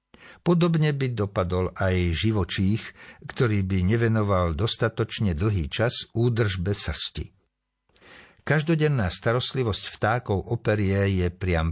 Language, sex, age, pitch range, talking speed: Slovak, male, 60-79, 90-120 Hz, 95 wpm